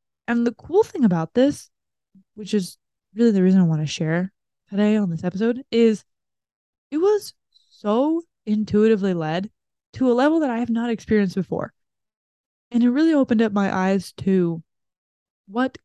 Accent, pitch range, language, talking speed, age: American, 185-230 Hz, English, 165 wpm, 20-39